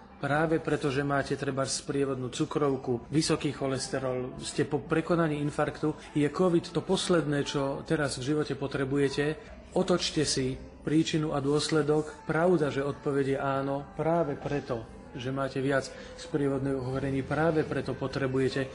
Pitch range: 140-155 Hz